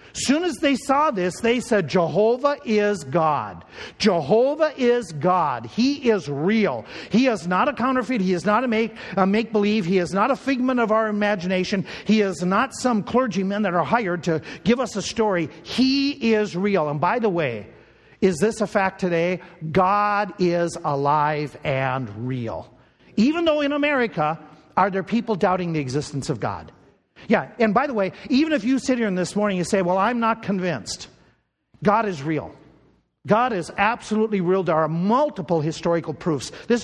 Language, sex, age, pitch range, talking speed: English, male, 50-69, 170-235 Hz, 180 wpm